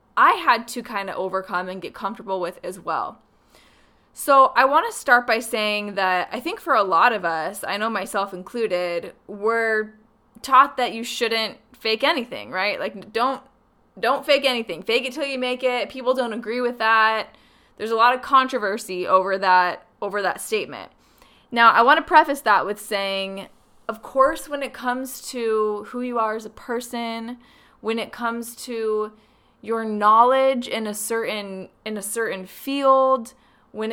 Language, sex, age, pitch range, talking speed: English, female, 20-39, 205-255 Hz, 175 wpm